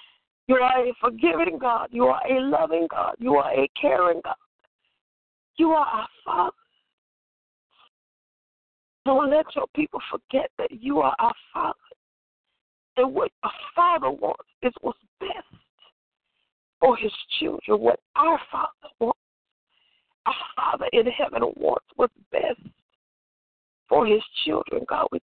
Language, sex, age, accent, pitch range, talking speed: English, female, 50-69, American, 225-360 Hz, 135 wpm